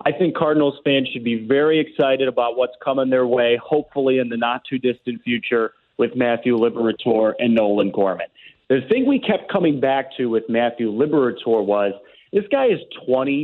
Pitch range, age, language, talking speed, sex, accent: 120-145 Hz, 30-49, English, 175 wpm, male, American